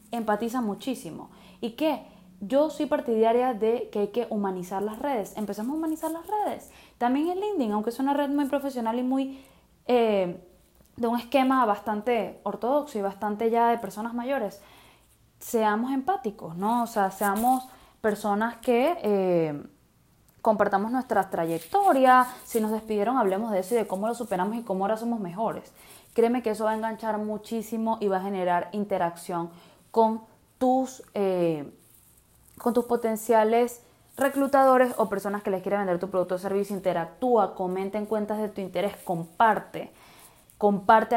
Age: 10-29